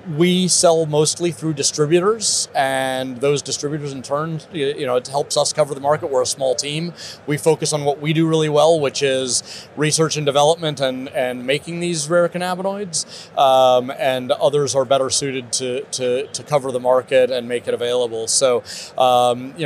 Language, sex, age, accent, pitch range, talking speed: English, male, 30-49, American, 130-155 Hz, 185 wpm